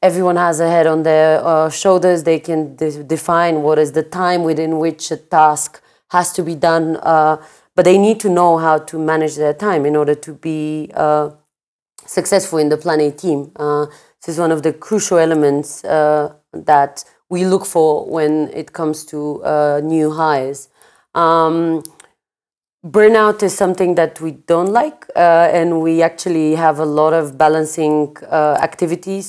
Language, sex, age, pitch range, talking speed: English, female, 30-49, 150-170 Hz, 175 wpm